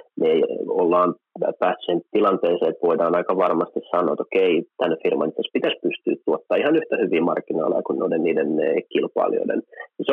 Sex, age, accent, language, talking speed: male, 30-49, native, Finnish, 140 wpm